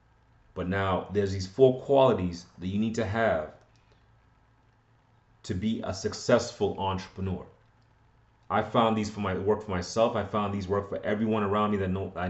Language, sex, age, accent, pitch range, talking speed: English, male, 30-49, American, 100-115 Hz, 165 wpm